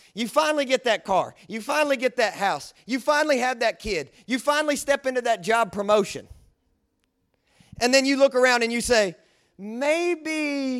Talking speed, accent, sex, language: 170 wpm, American, male, English